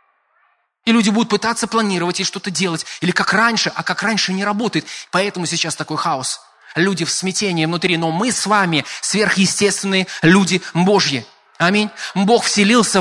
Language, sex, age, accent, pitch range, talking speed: Russian, male, 20-39, native, 165-220 Hz, 155 wpm